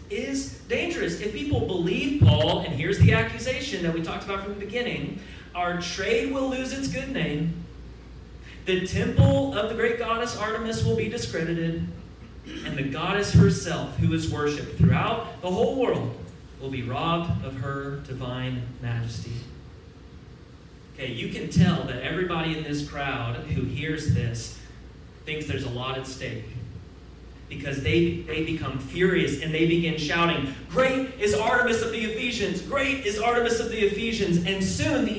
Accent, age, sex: American, 30-49, male